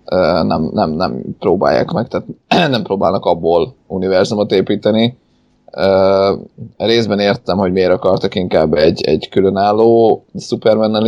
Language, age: Hungarian, 20-39